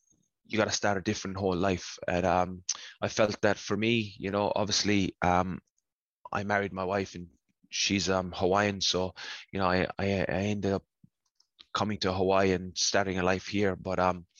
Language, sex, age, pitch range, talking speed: English, male, 20-39, 90-105 Hz, 190 wpm